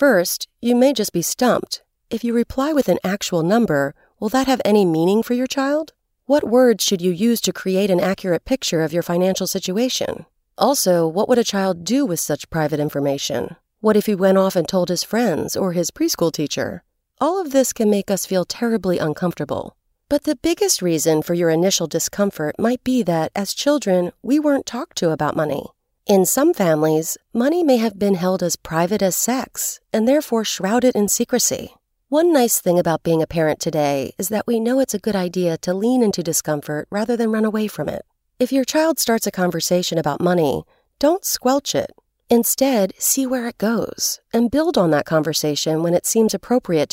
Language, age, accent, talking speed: English, 40-59, American, 195 wpm